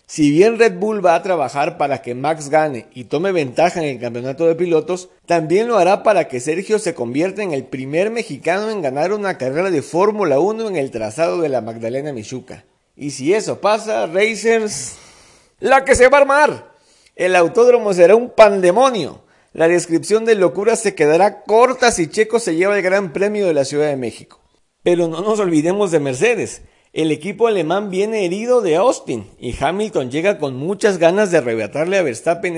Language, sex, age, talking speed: Spanish, male, 50-69, 190 wpm